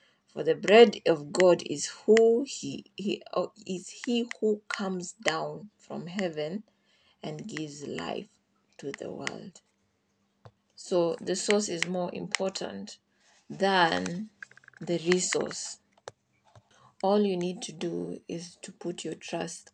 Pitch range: 165-200 Hz